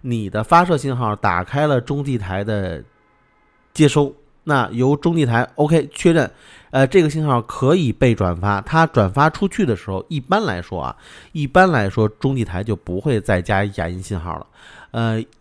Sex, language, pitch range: male, Chinese, 100-140 Hz